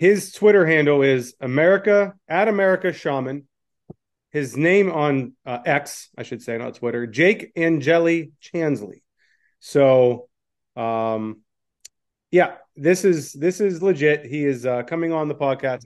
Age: 30-49